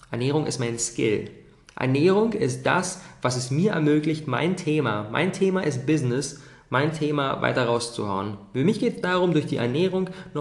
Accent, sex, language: German, male, German